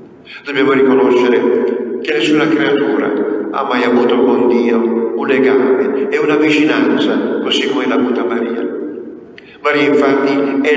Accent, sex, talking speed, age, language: native, male, 130 wpm, 50-69, Italian